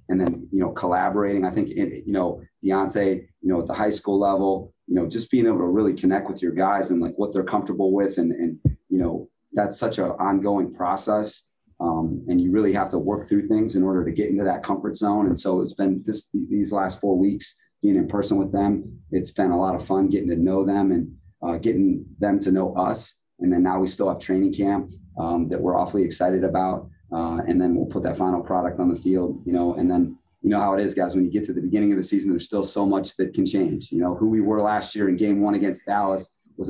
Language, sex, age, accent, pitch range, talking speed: English, male, 30-49, American, 90-100 Hz, 255 wpm